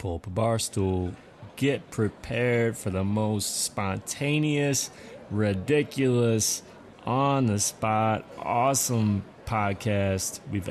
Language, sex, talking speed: English, male, 75 wpm